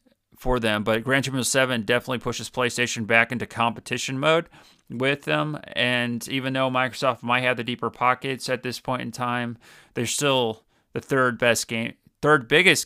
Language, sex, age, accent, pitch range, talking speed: English, male, 30-49, American, 115-145 Hz, 175 wpm